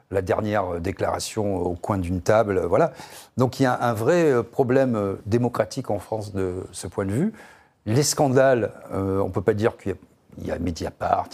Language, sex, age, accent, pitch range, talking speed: French, male, 40-59, French, 100-135 Hz, 185 wpm